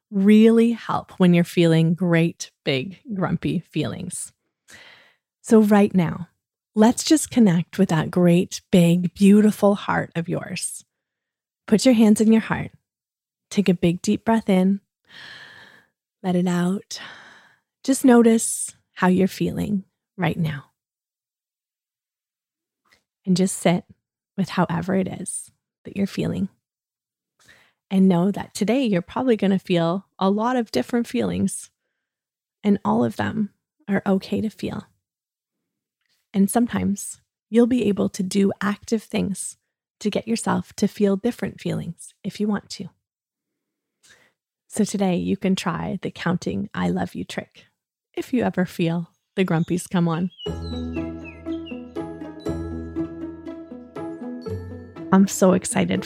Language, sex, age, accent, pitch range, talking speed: English, female, 20-39, American, 170-215 Hz, 125 wpm